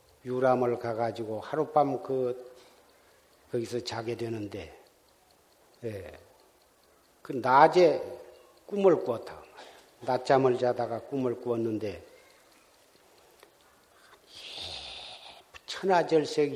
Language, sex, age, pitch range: Korean, male, 50-69, 120-155 Hz